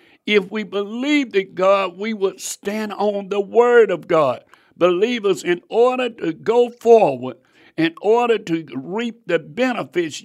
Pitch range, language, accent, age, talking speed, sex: 155-200 Hz, English, American, 60-79, 145 wpm, male